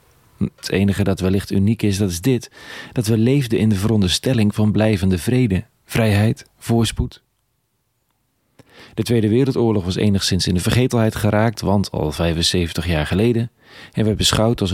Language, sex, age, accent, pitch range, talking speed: Dutch, male, 40-59, Dutch, 95-115 Hz, 155 wpm